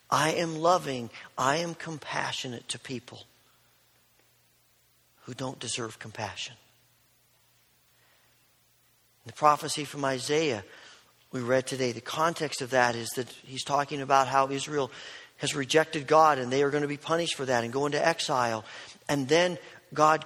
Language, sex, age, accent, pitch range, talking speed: English, male, 40-59, American, 135-180 Hz, 145 wpm